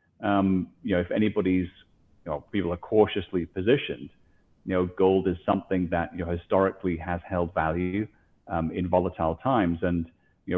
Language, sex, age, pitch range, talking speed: English, male, 30-49, 85-95 Hz, 165 wpm